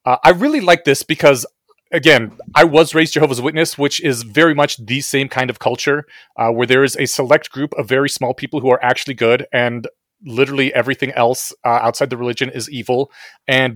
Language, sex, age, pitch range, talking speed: English, male, 30-49, 120-150 Hz, 205 wpm